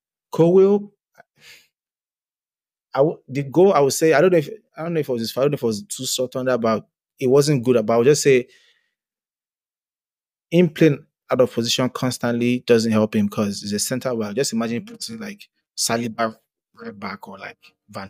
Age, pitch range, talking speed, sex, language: 20-39, 105-130 Hz, 190 wpm, male, English